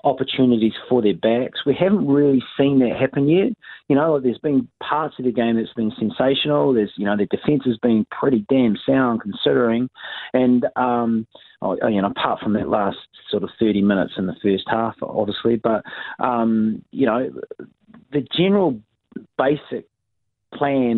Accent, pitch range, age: Australian, 115-175 Hz, 30-49